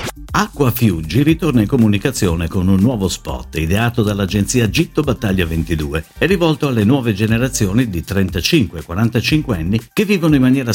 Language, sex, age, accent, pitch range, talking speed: Italian, male, 50-69, native, 85-135 Hz, 145 wpm